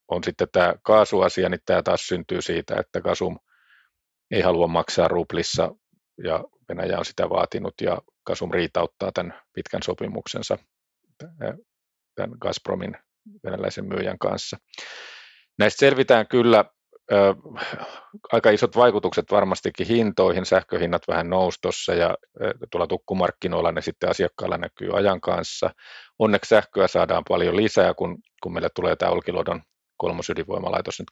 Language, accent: Finnish, native